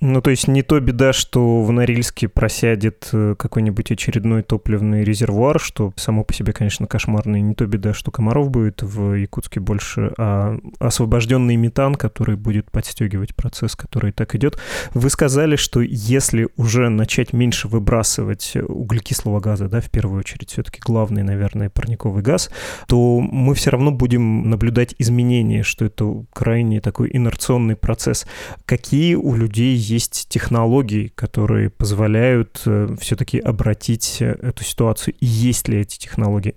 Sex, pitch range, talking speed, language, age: male, 105-125 Hz, 145 wpm, Russian, 20-39